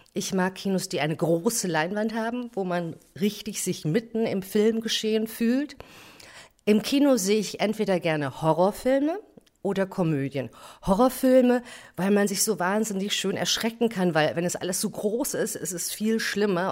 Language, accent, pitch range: German, German, 155-220 Hz